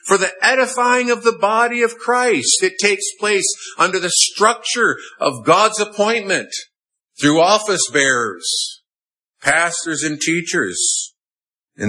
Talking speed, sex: 120 wpm, male